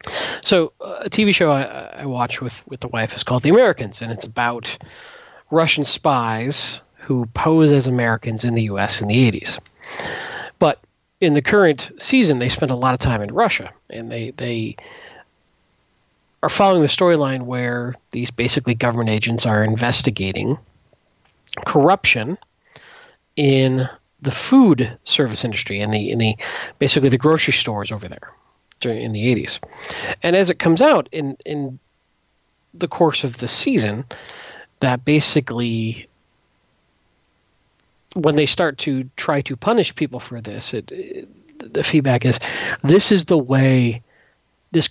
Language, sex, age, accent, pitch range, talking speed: English, male, 40-59, American, 115-155 Hz, 150 wpm